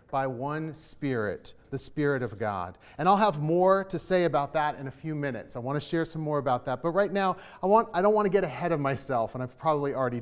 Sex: male